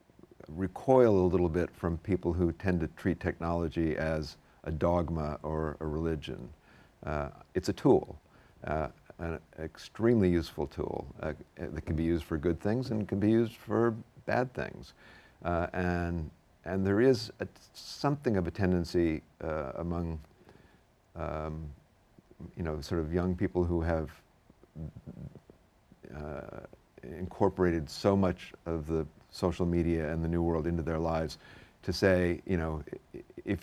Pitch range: 80-95 Hz